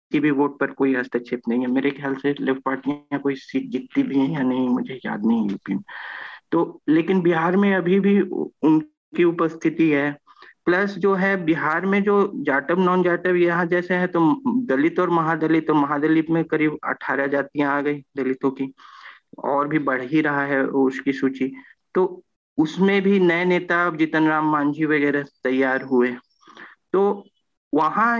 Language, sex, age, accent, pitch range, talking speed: Hindi, male, 50-69, native, 140-180 Hz, 90 wpm